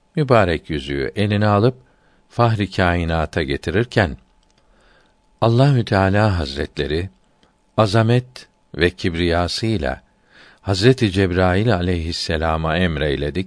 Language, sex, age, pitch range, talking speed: Turkish, male, 50-69, 85-110 Hz, 75 wpm